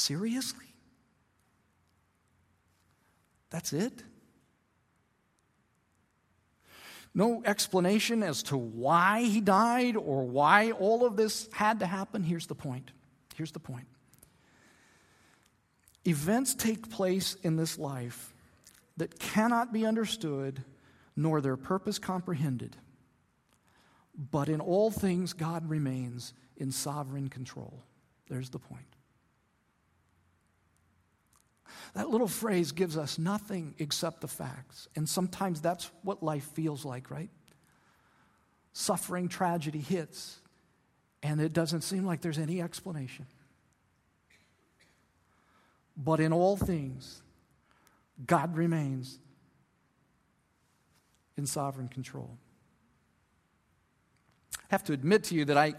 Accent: American